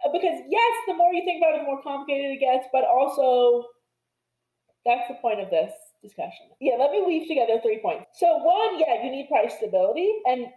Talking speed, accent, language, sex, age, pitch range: 205 wpm, American, English, female, 20-39, 230-335 Hz